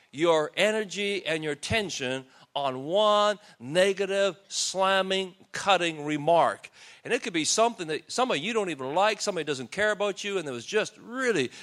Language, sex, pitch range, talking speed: English, male, 155-225 Hz, 165 wpm